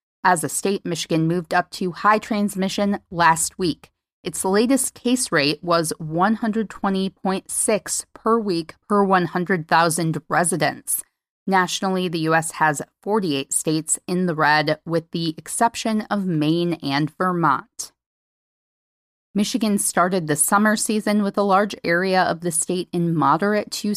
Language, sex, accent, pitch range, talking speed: English, female, American, 160-205 Hz, 135 wpm